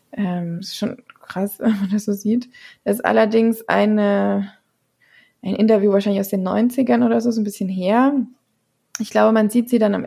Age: 20-39